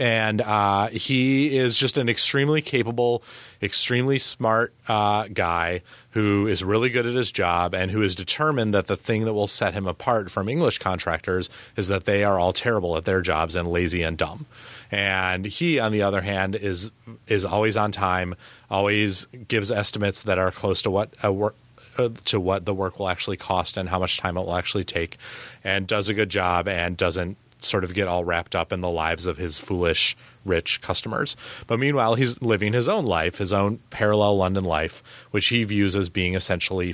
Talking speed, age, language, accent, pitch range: 200 wpm, 30-49, English, American, 90-115 Hz